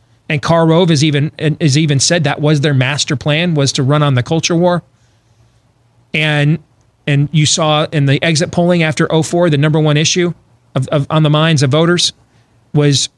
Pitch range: 130-170 Hz